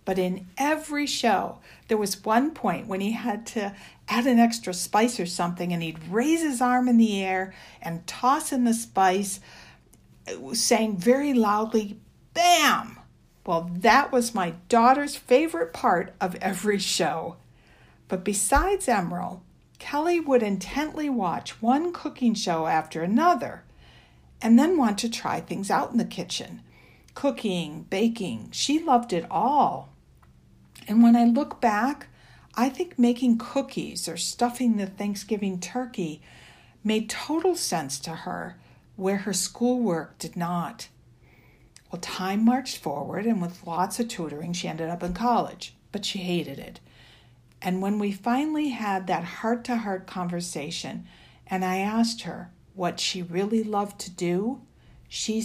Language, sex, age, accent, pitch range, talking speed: English, female, 60-79, American, 175-245 Hz, 145 wpm